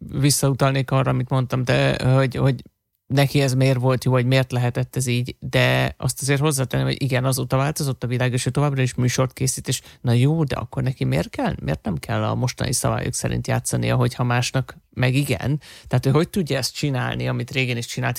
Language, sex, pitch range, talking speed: Hungarian, male, 125-140 Hz, 210 wpm